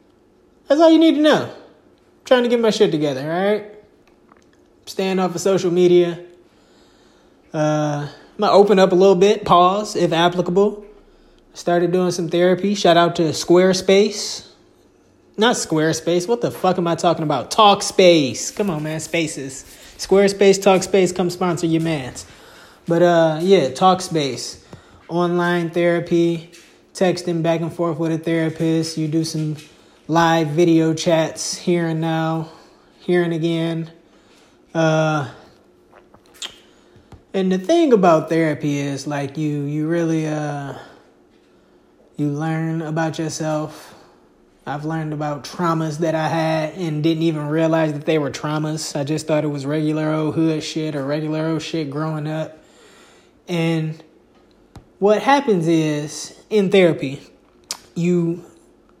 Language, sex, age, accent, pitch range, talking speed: English, male, 20-39, American, 155-180 Hz, 140 wpm